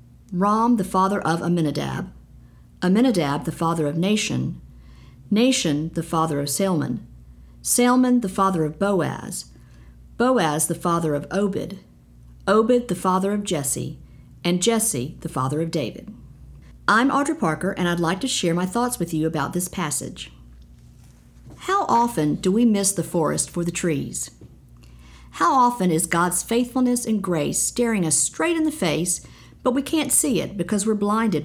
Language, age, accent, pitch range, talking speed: English, 50-69, American, 155-220 Hz, 155 wpm